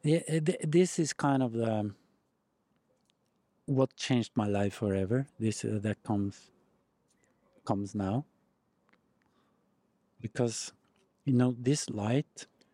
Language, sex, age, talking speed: English, male, 50-69, 105 wpm